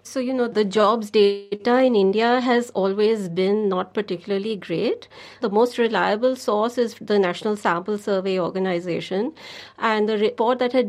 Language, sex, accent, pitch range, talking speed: English, female, Indian, 190-220 Hz, 160 wpm